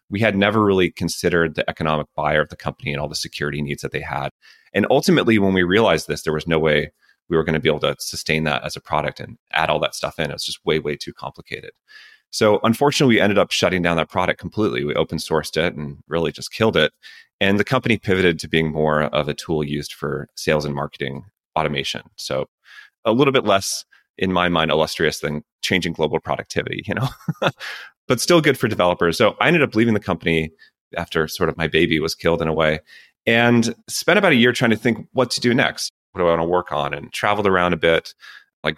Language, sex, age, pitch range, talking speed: English, male, 30-49, 80-115 Hz, 235 wpm